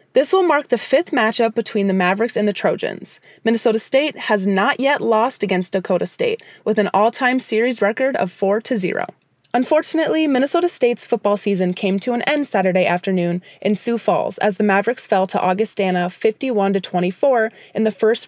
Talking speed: 170 wpm